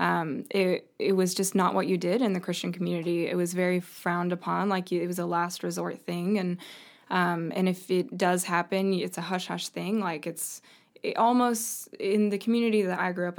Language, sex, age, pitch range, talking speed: English, female, 20-39, 175-195 Hz, 210 wpm